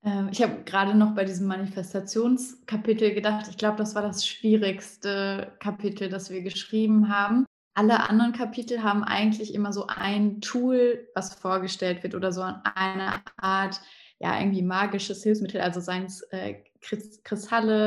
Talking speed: 145 wpm